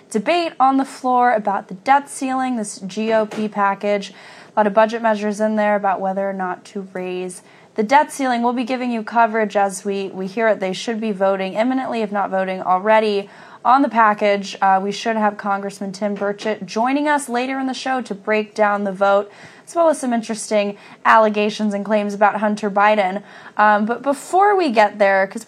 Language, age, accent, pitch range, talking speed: English, 10-29, American, 200-240 Hz, 200 wpm